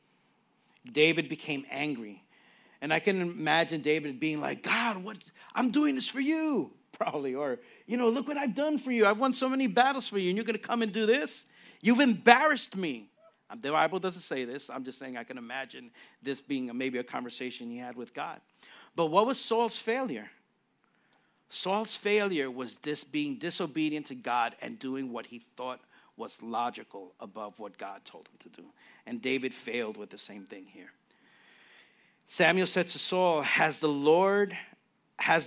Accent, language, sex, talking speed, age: American, English, male, 180 wpm, 50-69